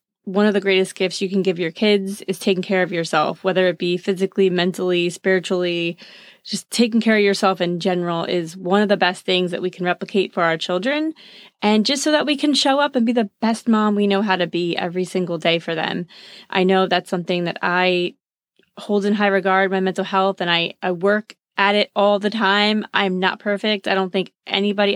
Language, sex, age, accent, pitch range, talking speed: English, female, 20-39, American, 185-210 Hz, 225 wpm